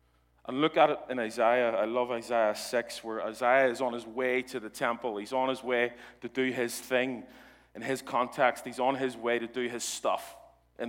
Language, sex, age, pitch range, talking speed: English, male, 30-49, 110-135 Hz, 215 wpm